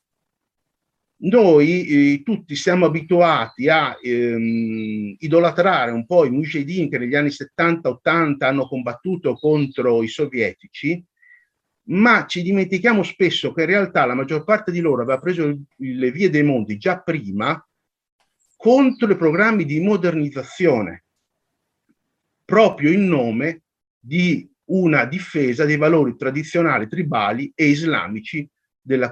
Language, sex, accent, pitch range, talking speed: Italian, male, native, 135-200 Hz, 120 wpm